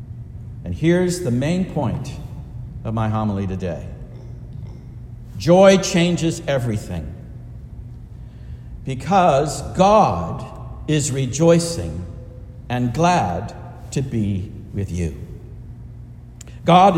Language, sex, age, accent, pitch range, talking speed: English, male, 60-79, American, 115-180 Hz, 80 wpm